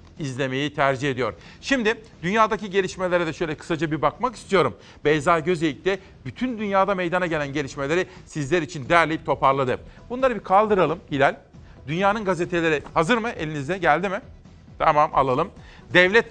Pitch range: 145-190 Hz